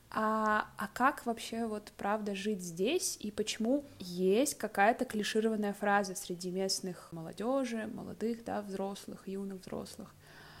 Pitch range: 185-225 Hz